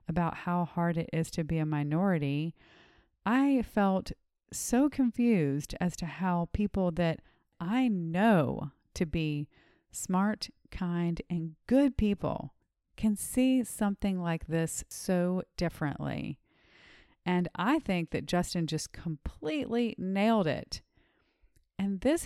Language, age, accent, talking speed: English, 40-59, American, 120 wpm